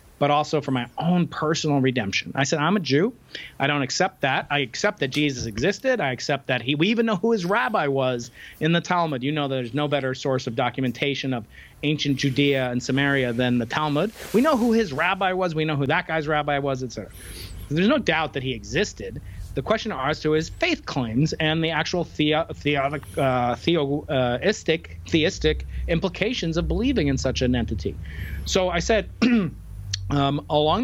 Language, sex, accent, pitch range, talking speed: English, male, American, 125-165 Hz, 195 wpm